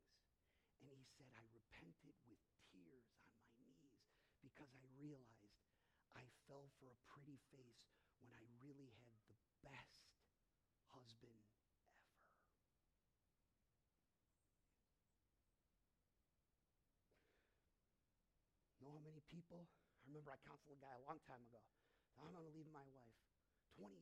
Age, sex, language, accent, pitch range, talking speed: 40-59, male, English, American, 115-165 Hz, 110 wpm